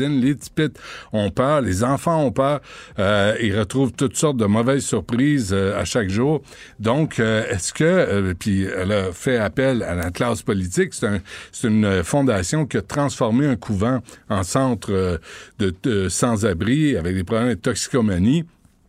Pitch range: 100-135 Hz